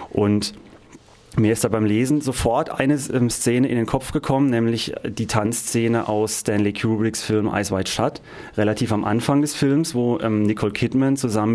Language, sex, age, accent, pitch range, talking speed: German, male, 30-49, German, 110-135 Hz, 165 wpm